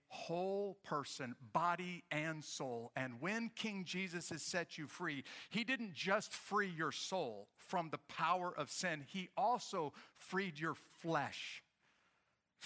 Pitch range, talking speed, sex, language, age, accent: 160-205 Hz, 140 wpm, male, English, 50-69, American